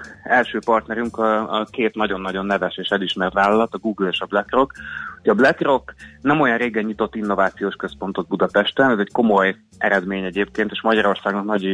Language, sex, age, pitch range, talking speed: Hungarian, male, 30-49, 100-115 Hz, 160 wpm